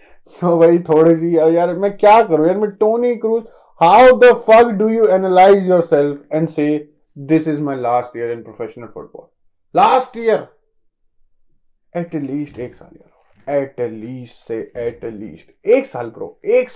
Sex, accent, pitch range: male, native, 125-175 Hz